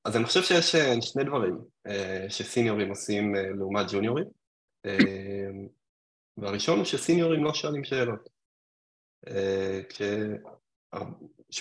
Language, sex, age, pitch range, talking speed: English, male, 20-39, 100-135 Hz, 90 wpm